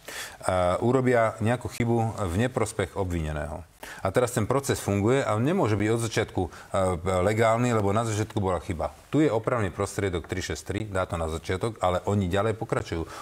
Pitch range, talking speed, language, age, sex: 95-125 Hz, 160 wpm, Slovak, 40-59, male